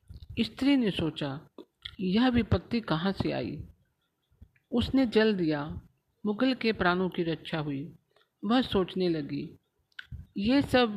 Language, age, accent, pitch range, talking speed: Hindi, 50-69, native, 175-225 Hz, 120 wpm